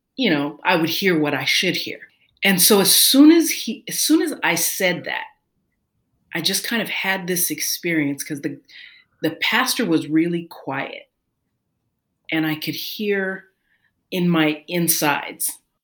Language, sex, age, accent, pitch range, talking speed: English, female, 40-59, American, 150-190 Hz, 160 wpm